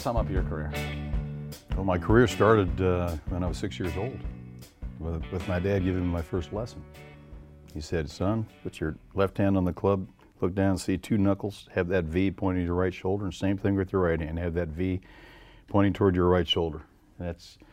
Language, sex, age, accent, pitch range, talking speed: English, male, 50-69, American, 80-95 Hz, 215 wpm